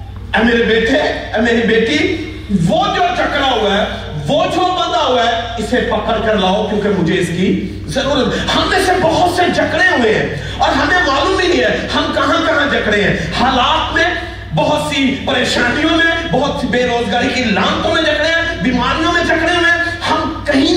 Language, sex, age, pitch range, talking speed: Urdu, male, 40-59, 225-330 Hz, 80 wpm